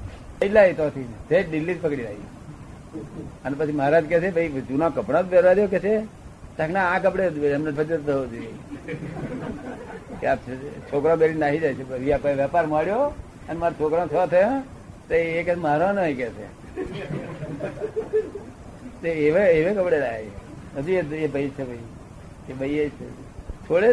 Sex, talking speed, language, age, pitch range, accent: male, 80 wpm, Gujarati, 60-79, 135-175 Hz, native